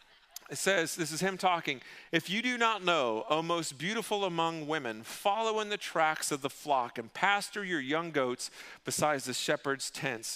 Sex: male